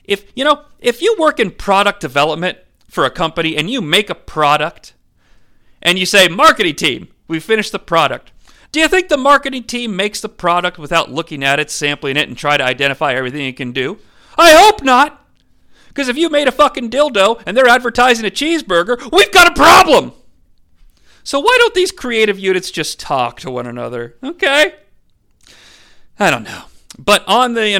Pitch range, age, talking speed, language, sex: 140-225 Hz, 40-59, 190 wpm, English, male